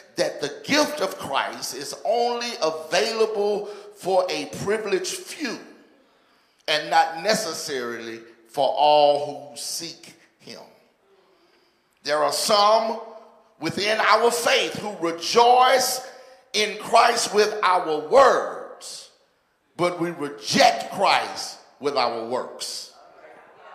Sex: male